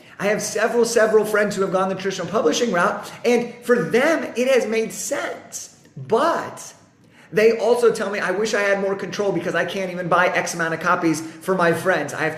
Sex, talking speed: male, 215 wpm